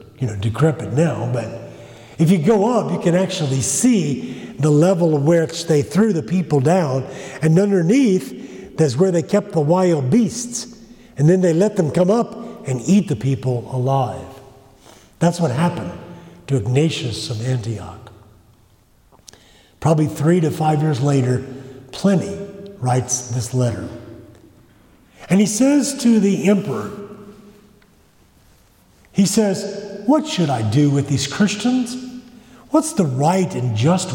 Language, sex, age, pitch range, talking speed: English, male, 50-69, 130-200 Hz, 135 wpm